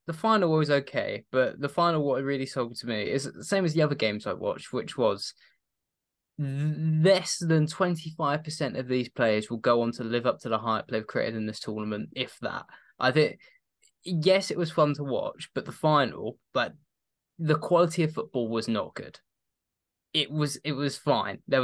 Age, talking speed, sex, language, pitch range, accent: 20-39, 200 wpm, male, English, 120-155 Hz, British